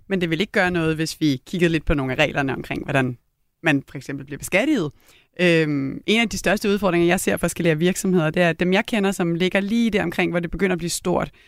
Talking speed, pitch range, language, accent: 250 wpm, 170-205 Hz, Danish, native